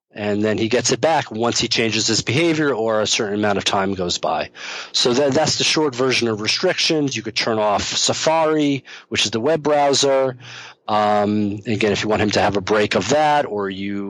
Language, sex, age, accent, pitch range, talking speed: English, male, 40-59, American, 105-130 Hz, 215 wpm